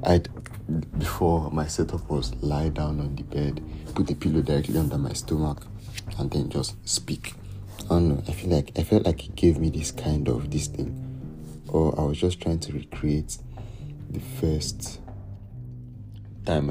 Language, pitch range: English, 75-95 Hz